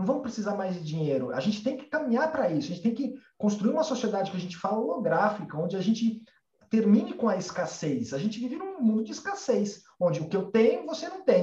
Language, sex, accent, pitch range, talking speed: Portuguese, male, Brazilian, 155-230 Hz, 245 wpm